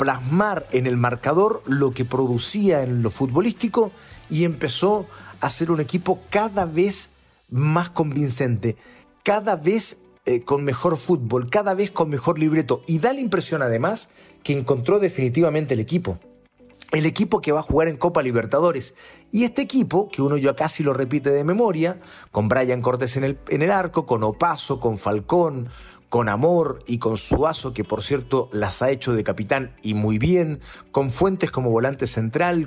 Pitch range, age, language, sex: 130-175 Hz, 40-59, Spanish, male